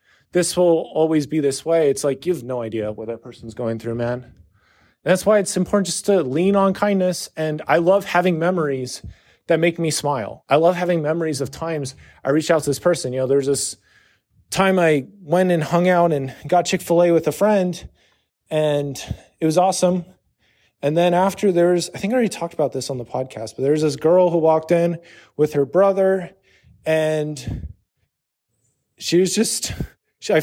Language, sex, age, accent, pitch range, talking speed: English, male, 30-49, American, 135-190 Hz, 190 wpm